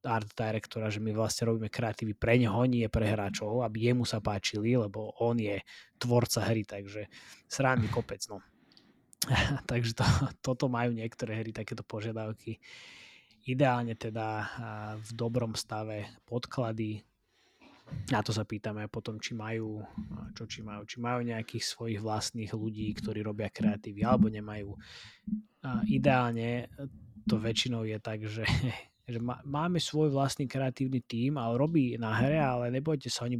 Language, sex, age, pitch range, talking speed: Slovak, male, 20-39, 110-125 Hz, 145 wpm